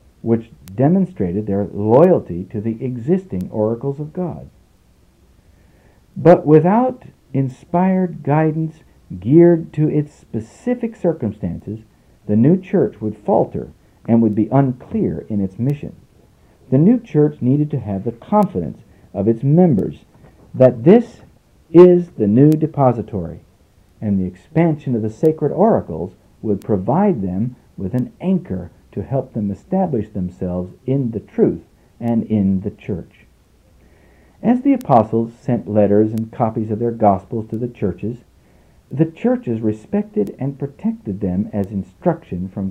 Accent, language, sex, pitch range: American, English, male, 100-155 Hz